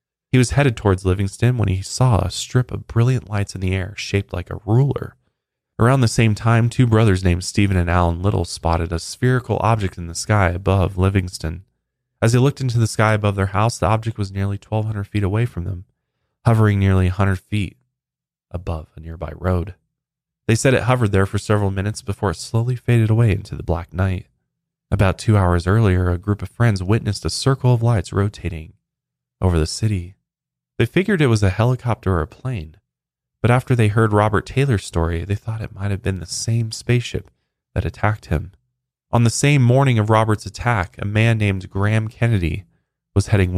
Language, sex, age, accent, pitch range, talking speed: English, male, 20-39, American, 95-120 Hz, 195 wpm